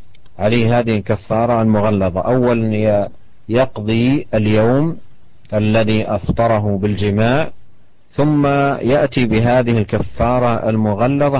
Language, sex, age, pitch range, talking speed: Indonesian, male, 40-59, 105-125 Hz, 80 wpm